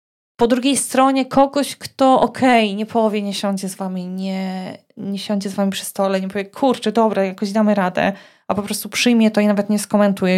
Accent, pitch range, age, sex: native, 195-235 Hz, 20-39, female